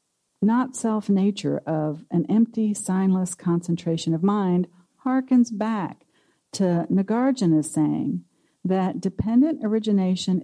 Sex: female